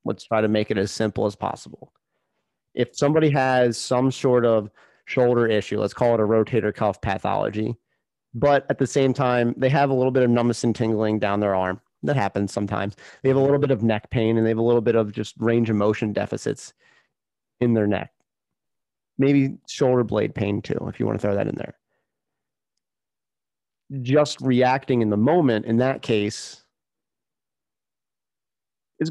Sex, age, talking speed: male, 30-49, 185 wpm